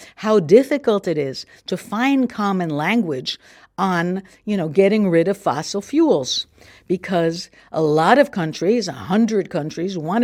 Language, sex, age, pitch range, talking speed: English, female, 60-79, 165-215 Hz, 145 wpm